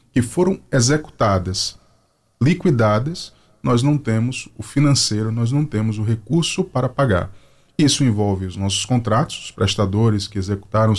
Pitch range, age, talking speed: 100-125 Hz, 20-39, 135 wpm